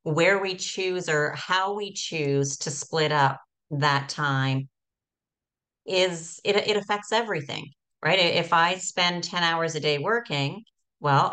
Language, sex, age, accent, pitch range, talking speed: English, female, 40-59, American, 145-175 Hz, 145 wpm